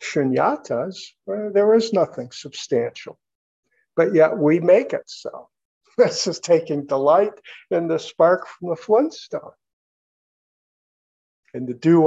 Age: 50-69